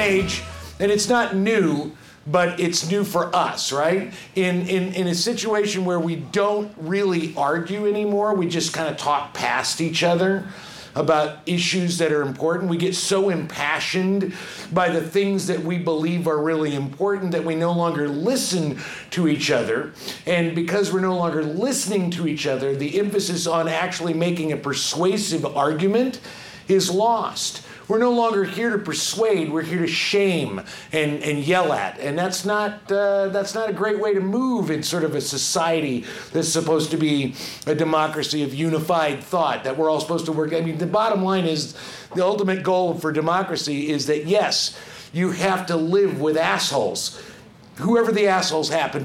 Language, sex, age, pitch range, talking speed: English, male, 50-69, 155-195 Hz, 175 wpm